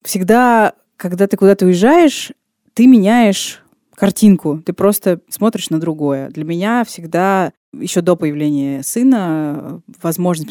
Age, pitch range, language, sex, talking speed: 20-39, 160-225 Hz, Russian, female, 120 wpm